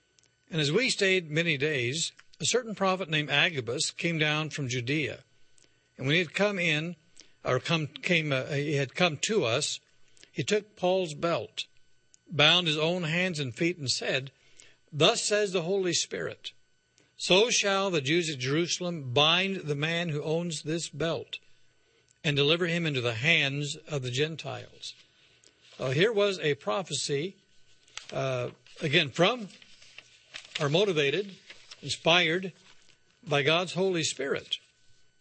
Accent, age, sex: American, 60-79, male